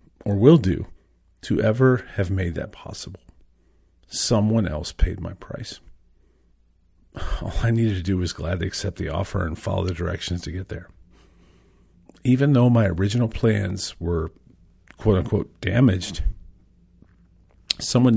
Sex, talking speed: male, 135 wpm